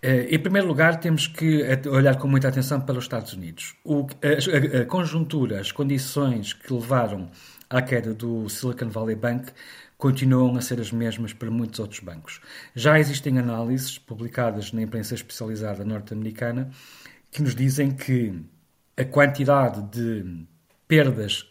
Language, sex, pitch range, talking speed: Portuguese, male, 110-135 Hz, 145 wpm